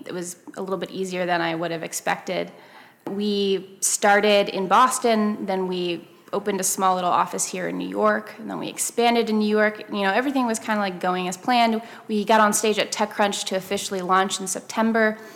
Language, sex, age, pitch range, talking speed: English, female, 20-39, 190-235 Hz, 210 wpm